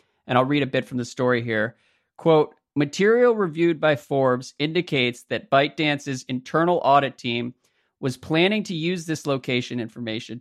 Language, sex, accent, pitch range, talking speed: English, male, American, 125-150 Hz, 155 wpm